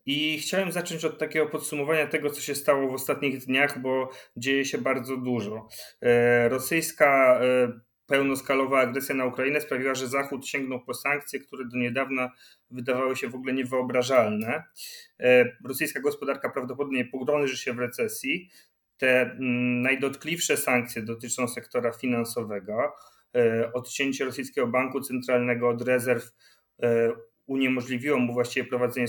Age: 30-49